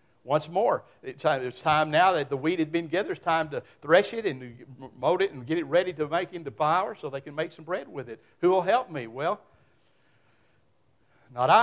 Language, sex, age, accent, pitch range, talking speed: English, male, 60-79, American, 125-190 Hz, 210 wpm